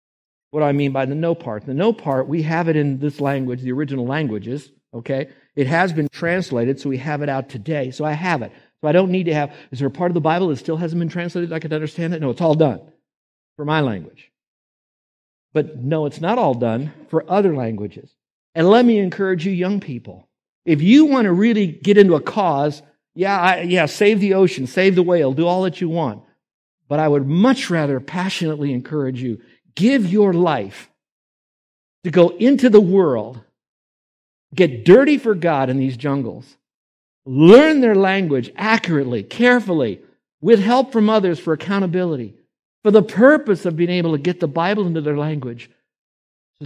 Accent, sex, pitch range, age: American, male, 135-185 Hz, 60-79